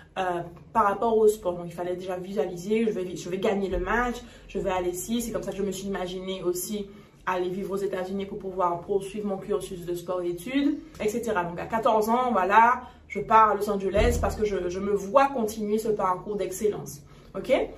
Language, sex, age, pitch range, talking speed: French, female, 20-39, 200-250 Hz, 225 wpm